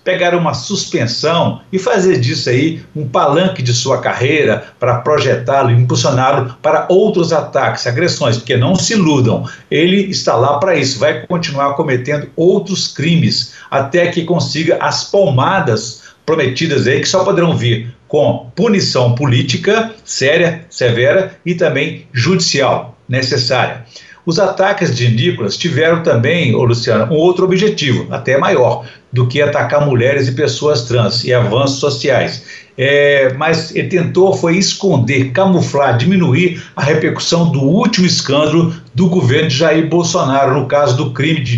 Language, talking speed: Portuguese, 140 wpm